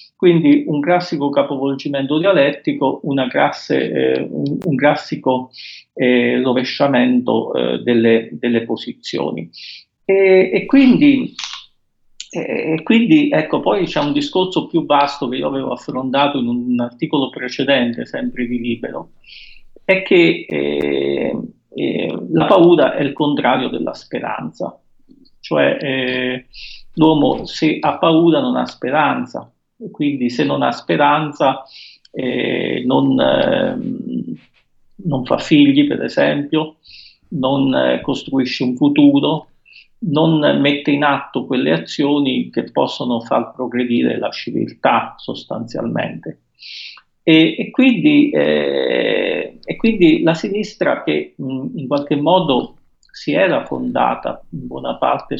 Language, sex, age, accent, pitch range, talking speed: Italian, male, 50-69, native, 125-170 Hz, 115 wpm